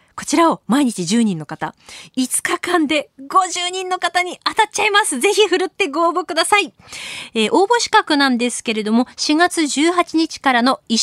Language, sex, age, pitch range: Japanese, female, 20-39, 220-315 Hz